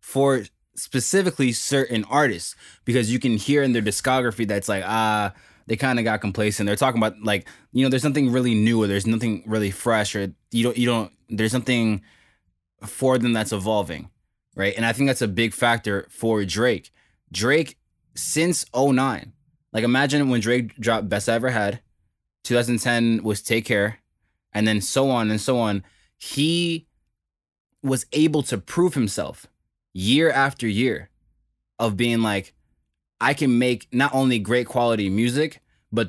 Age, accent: 20-39, American